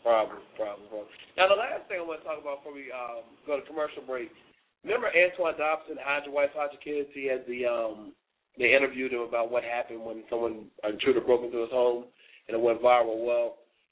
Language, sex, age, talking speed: English, male, 20-39, 205 wpm